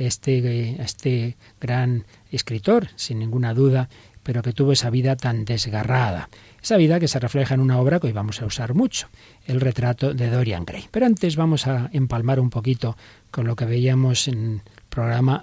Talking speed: 185 wpm